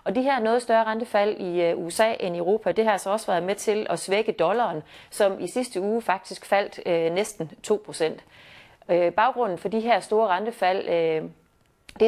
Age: 30-49